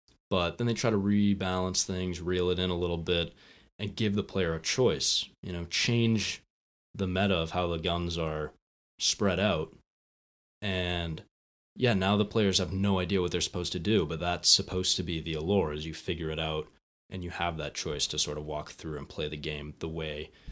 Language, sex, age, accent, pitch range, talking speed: English, male, 20-39, American, 80-100 Hz, 210 wpm